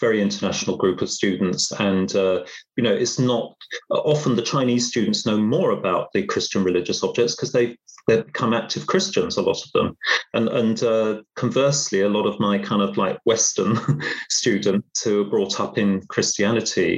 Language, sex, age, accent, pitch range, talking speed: English, male, 30-49, British, 100-125 Hz, 185 wpm